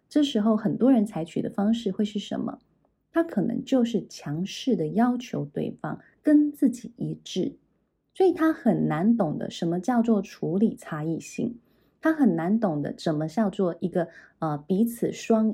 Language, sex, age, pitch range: Chinese, female, 20-39, 165-240 Hz